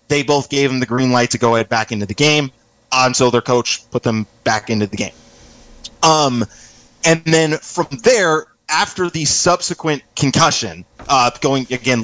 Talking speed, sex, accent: 180 wpm, male, American